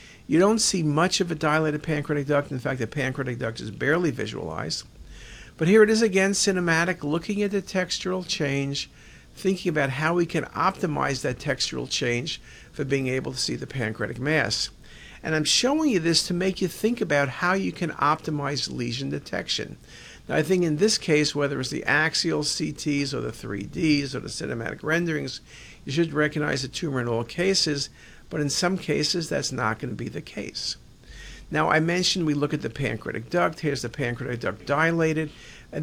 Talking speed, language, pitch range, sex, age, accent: 190 wpm, English, 140-180 Hz, male, 50-69, American